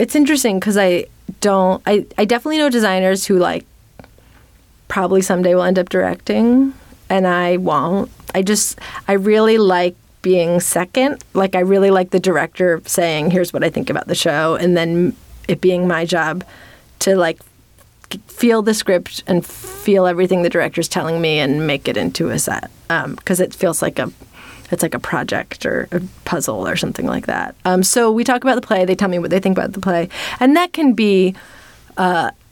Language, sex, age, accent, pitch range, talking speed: English, female, 30-49, American, 175-205 Hz, 190 wpm